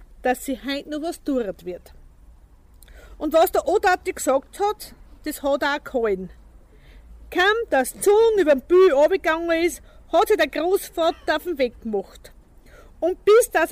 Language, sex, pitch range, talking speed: German, female, 245-340 Hz, 155 wpm